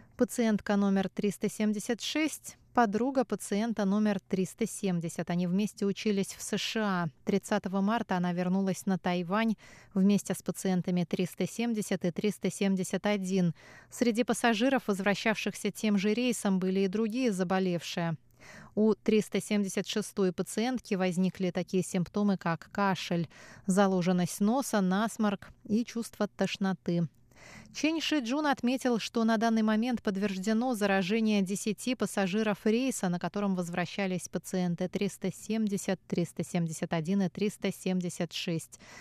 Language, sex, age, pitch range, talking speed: Russian, female, 20-39, 180-220 Hz, 105 wpm